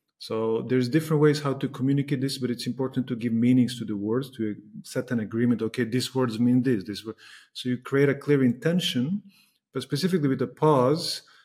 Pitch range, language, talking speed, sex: 120-140 Hz, English, 205 wpm, male